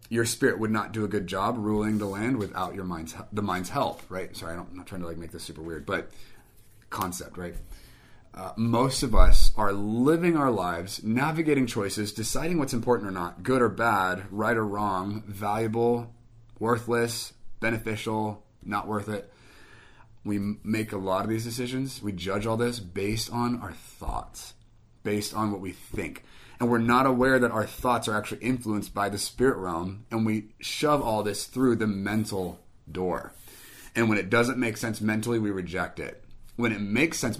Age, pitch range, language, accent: 30-49, 95-115 Hz, English, American